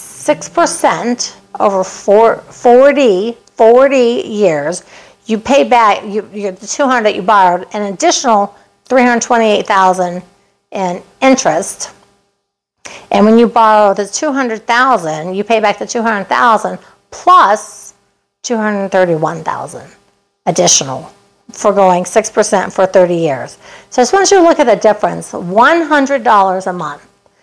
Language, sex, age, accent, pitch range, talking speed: English, female, 50-69, American, 205-260 Hz, 120 wpm